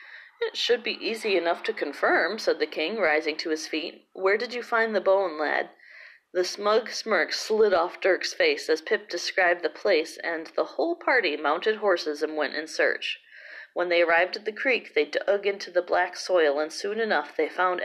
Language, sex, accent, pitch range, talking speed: English, female, American, 165-250 Hz, 200 wpm